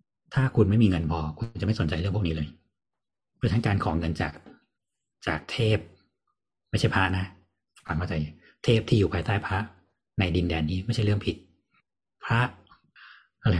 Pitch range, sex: 80-105 Hz, male